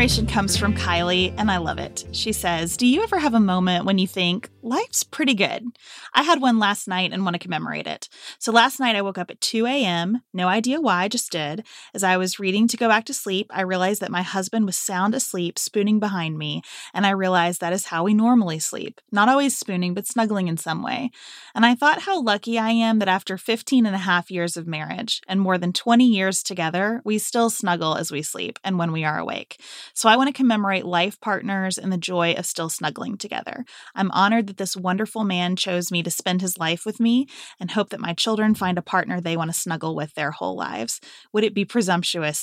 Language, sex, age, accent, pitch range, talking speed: English, female, 20-39, American, 175-225 Hz, 230 wpm